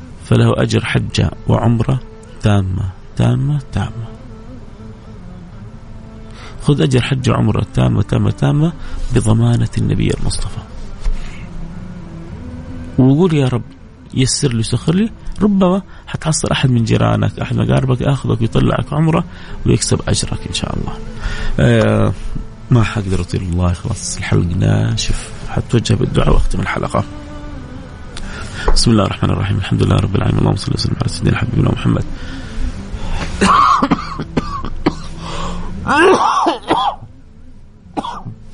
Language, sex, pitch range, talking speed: Arabic, male, 100-120 Hz, 100 wpm